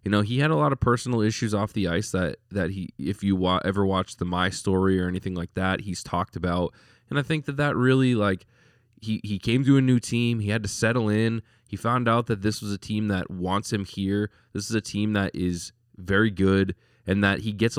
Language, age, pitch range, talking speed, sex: English, 20-39, 95-115 Hz, 245 wpm, male